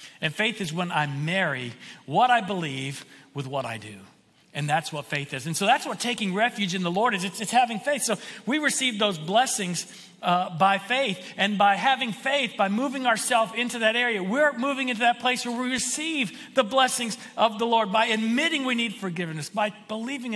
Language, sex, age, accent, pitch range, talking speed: English, male, 50-69, American, 160-220 Hz, 205 wpm